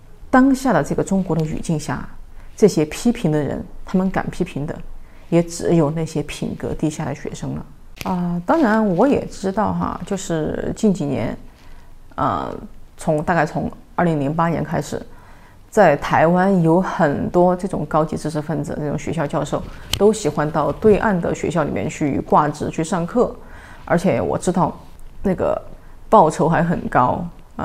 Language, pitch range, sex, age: Chinese, 155-205 Hz, female, 30-49